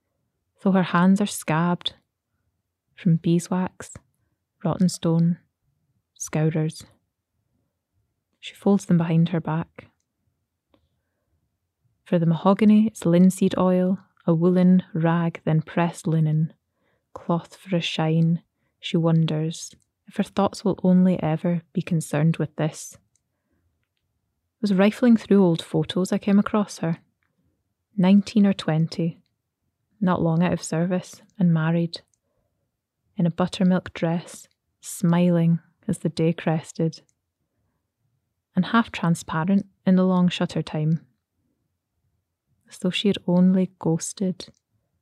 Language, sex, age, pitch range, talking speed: English, female, 20-39, 130-185 Hz, 115 wpm